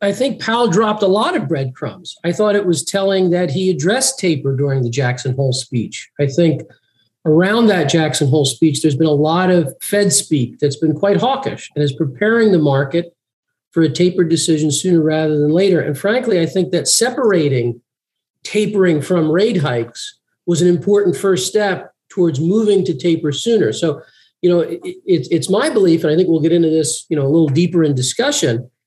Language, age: English, 40-59